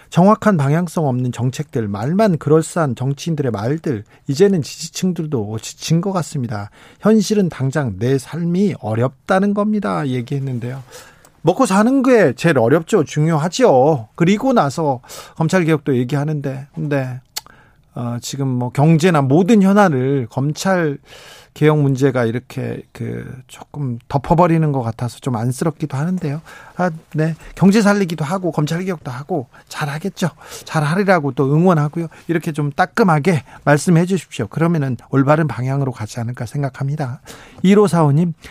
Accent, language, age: native, Korean, 40-59